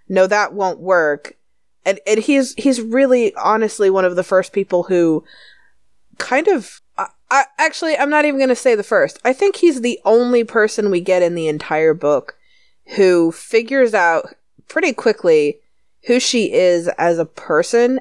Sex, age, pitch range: female, 30-49, 165-240 Hz